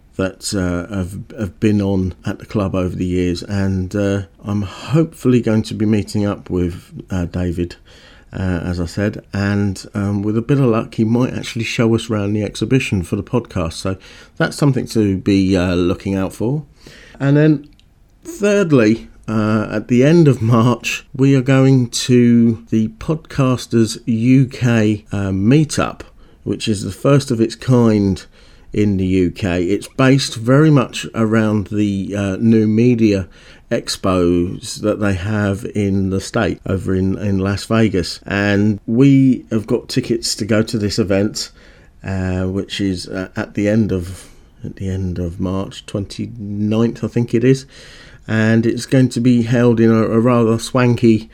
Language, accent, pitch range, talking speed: English, British, 95-120 Hz, 165 wpm